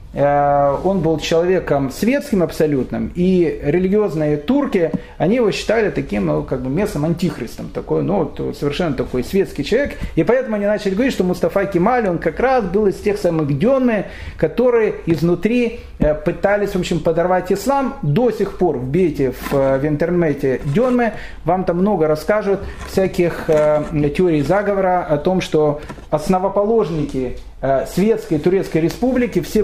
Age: 30-49